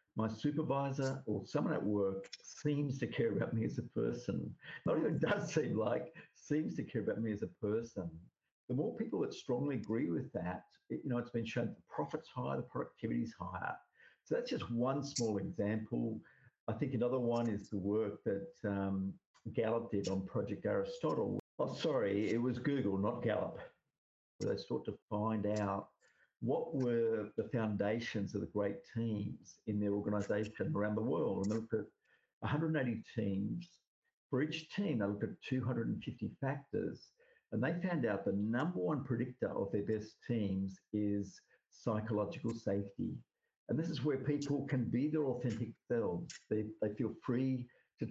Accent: Australian